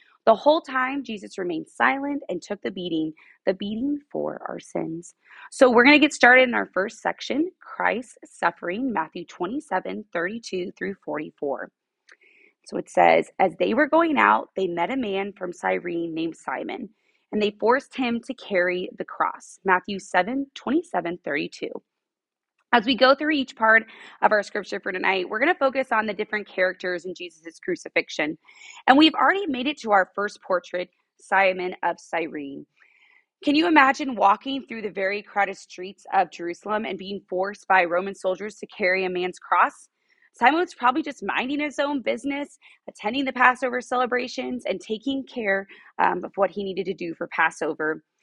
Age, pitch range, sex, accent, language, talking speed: 20-39, 185-275 Hz, female, American, English, 175 wpm